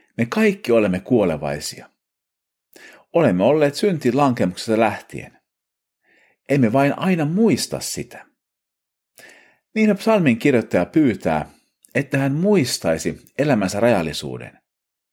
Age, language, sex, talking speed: 50-69, Finnish, male, 90 wpm